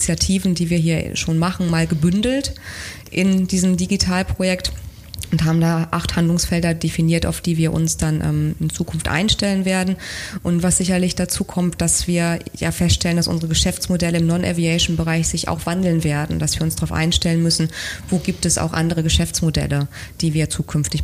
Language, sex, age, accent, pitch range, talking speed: German, female, 20-39, German, 160-175 Hz, 170 wpm